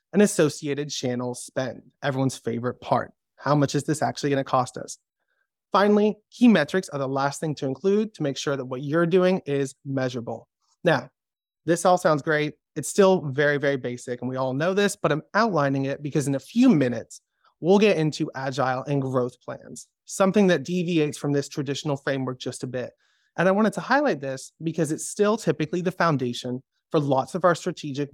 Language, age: English, 30-49